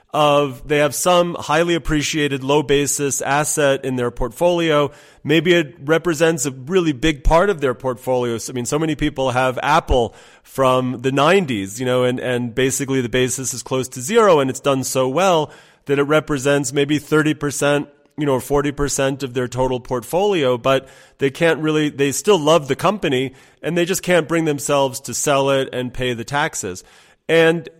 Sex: male